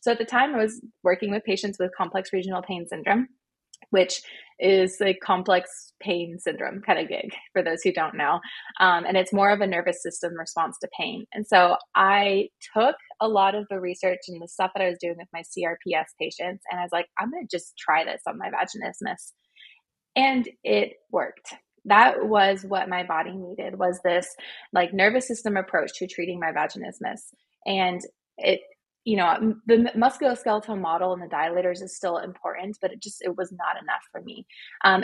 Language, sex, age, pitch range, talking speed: English, female, 20-39, 180-210 Hz, 195 wpm